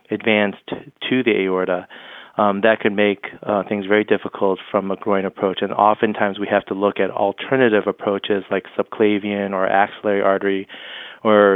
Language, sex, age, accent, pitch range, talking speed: English, male, 30-49, American, 95-110 Hz, 160 wpm